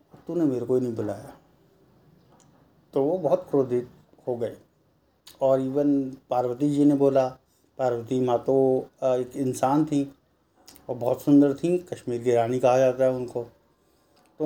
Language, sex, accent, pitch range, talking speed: Hindi, male, native, 125-150 Hz, 150 wpm